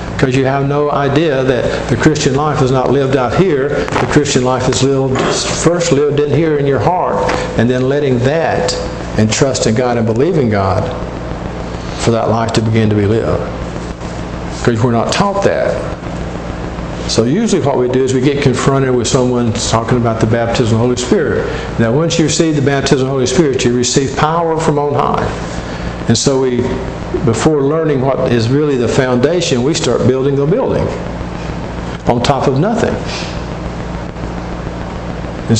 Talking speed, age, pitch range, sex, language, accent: 175 wpm, 50-69, 115-140 Hz, male, English, American